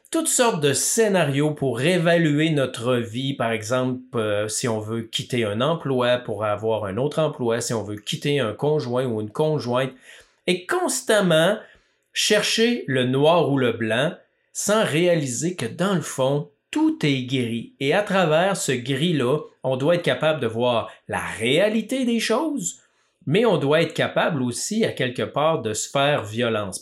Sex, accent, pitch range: male, Canadian, 125-170 Hz